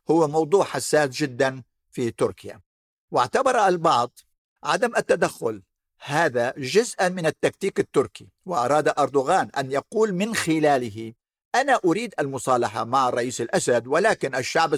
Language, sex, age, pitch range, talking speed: Arabic, male, 50-69, 130-170 Hz, 120 wpm